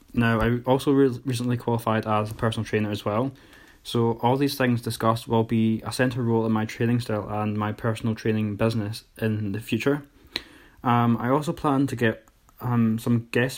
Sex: male